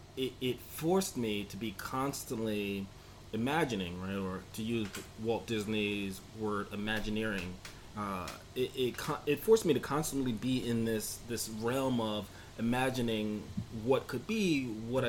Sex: male